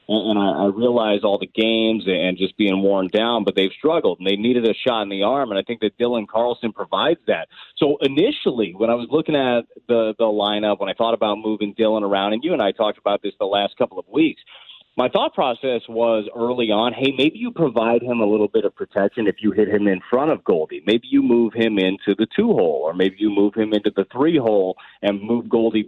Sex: male